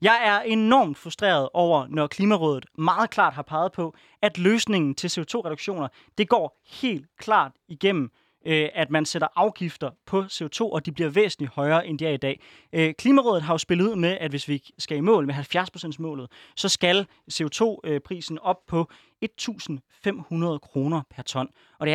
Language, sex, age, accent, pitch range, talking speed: Danish, male, 20-39, native, 150-200 Hz, 170 wpm